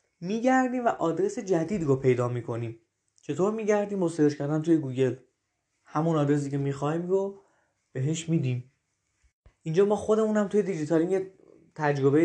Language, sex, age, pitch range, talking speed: Persian, male, 20-39, 135-175 Hz, 125 wpm